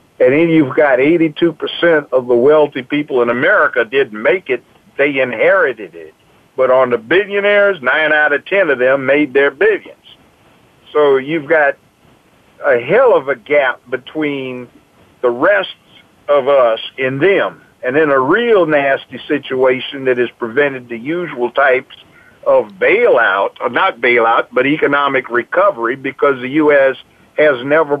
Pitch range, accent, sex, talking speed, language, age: 130-165 Hz, American, male, 150 wpm, English, 50-69